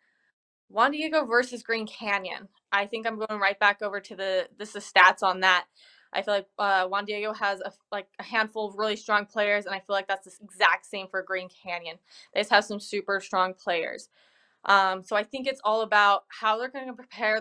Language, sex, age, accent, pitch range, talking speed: English, female, 20-39, American, 195-220 Hz, 215 wpm